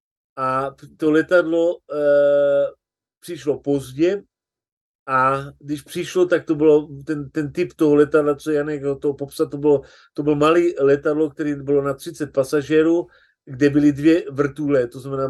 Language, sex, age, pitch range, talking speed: Slovak, male, 40-59, 140-165 Hz, 145 wpm